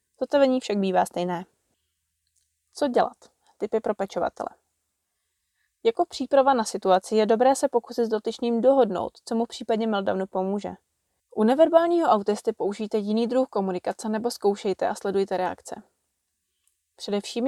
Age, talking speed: 20-39, 130 wpm